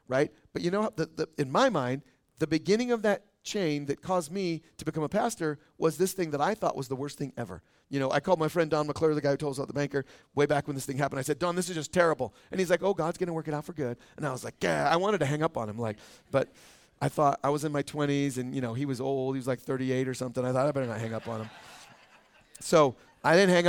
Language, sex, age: English, male, 40-59